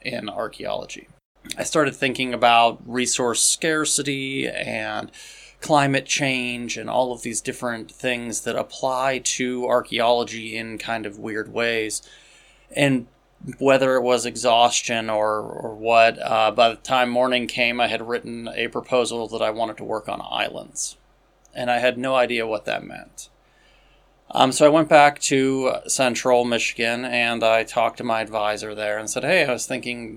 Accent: American